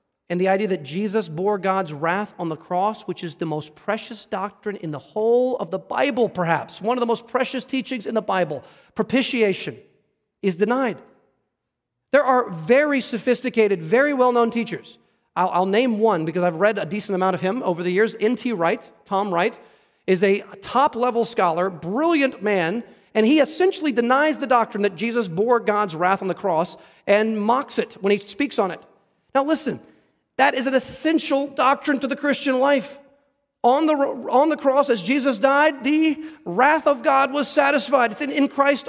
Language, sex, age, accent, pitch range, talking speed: English, male, 40-59, American, 200-265 Hz, 180 wpm